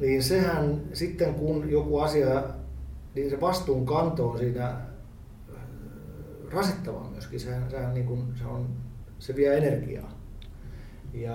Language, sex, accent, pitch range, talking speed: Finnish, male, native, 115-135 Hz, 120 wpm